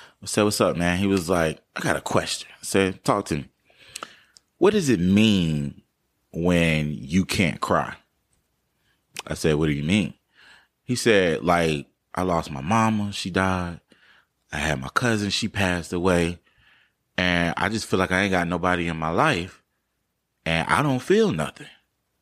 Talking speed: 175 wpm